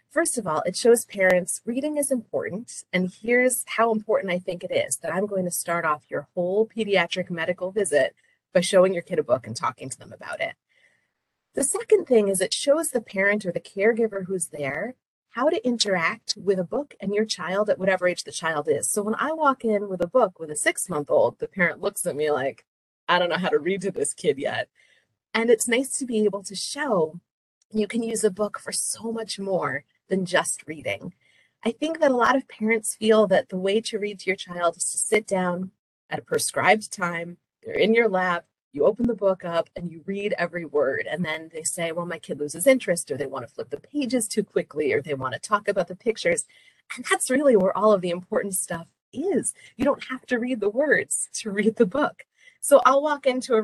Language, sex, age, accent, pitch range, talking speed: English, female, 30-49, American, 180-235 Hz, 225 wpm